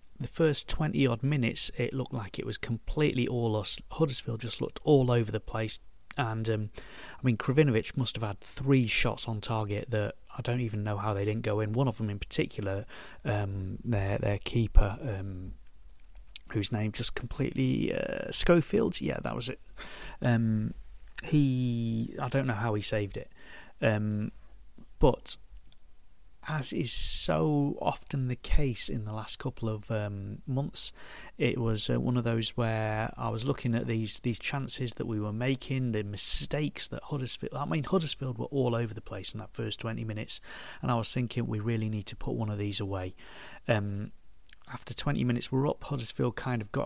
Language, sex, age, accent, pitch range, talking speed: English, male, 30-49, British, 105-125 Hz, 185 wpm